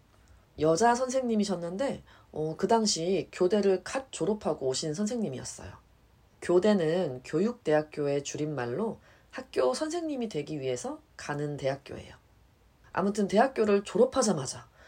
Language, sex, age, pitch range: Korean, female, 30-49, 145-230 Hz